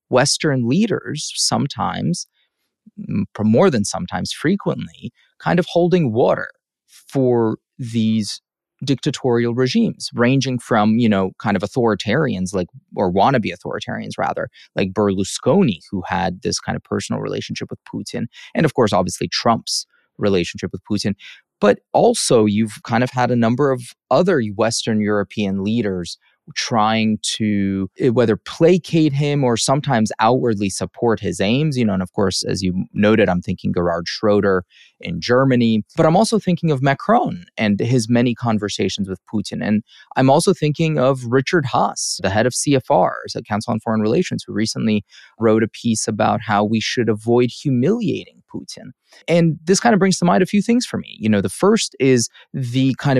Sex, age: male, 30-49